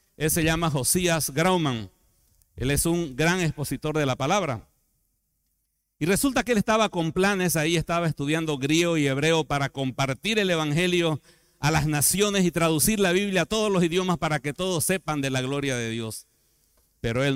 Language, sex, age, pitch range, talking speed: Spanish, male, 60-79, 130-185 Hz, 180 wpm